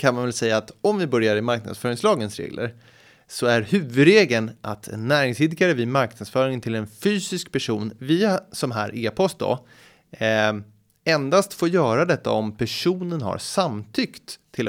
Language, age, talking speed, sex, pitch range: Swedish, 20-39, 150 wpm, male, 110-160 Hz